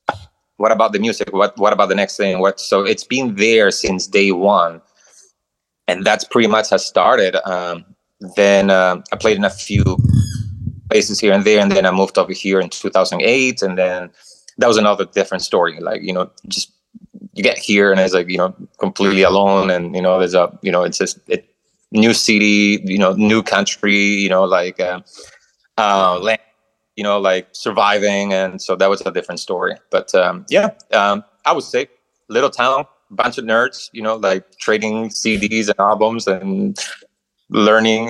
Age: 20-39